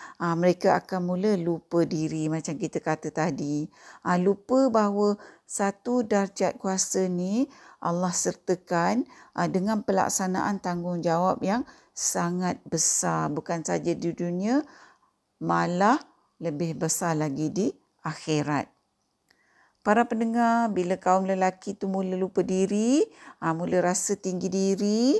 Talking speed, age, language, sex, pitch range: 120 wpm, 50-69, Malay, female, 170-230 Hz